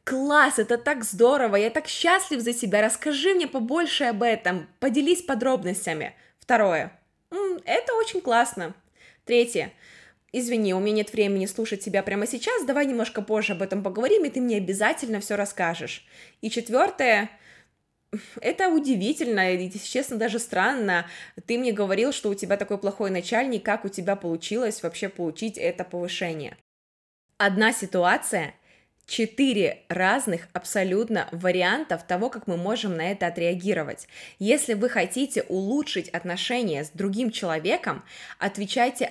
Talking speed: 135 wpm